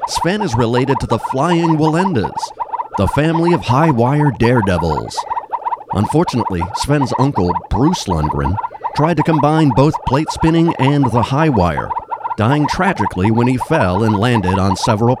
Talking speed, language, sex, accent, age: 135 wpm, English, male, American, 50-69